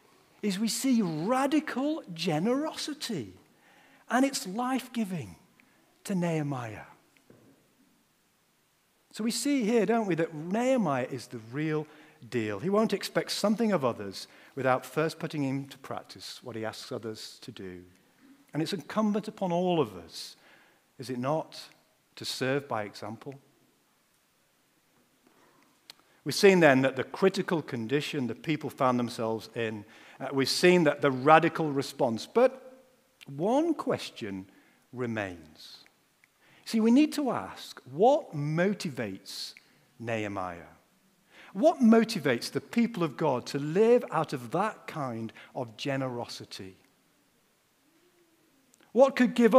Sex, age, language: male, 50-69, English